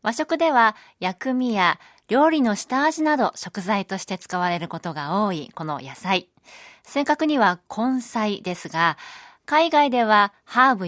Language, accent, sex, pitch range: Japanese, native, female, 185-260 Hz